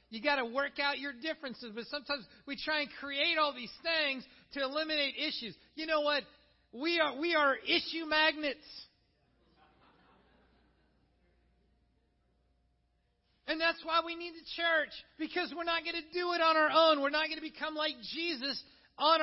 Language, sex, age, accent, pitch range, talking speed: English, male, 40-59, American, 195-300 Hz, 165 wpm